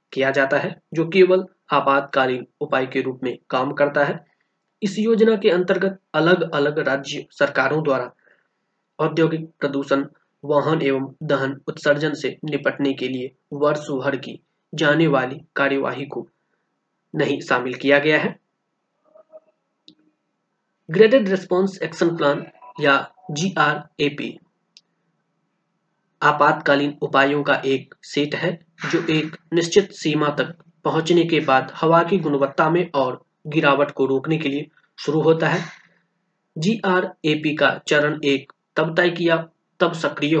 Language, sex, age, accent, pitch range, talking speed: Hindi, male, 20-39, native, 145-185 Hz, 120 wpm